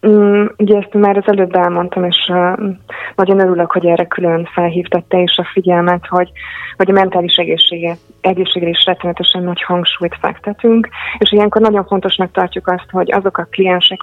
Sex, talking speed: female, 165 wpm